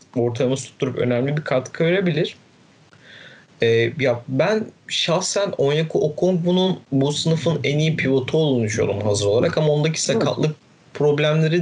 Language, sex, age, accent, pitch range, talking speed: Turkish, male, 30-49, native, 120-155 Hz, 135 wpm